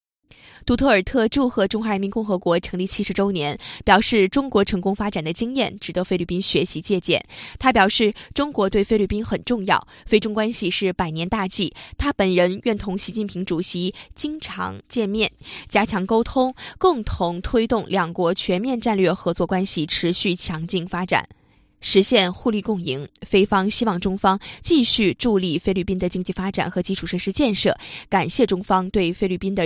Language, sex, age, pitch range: Chinese, female, 20-39, 180-220 Hz